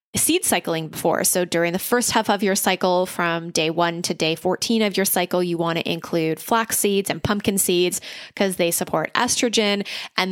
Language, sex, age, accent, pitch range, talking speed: English, female, 20-39, American, 170-210 Hz, 200 wpm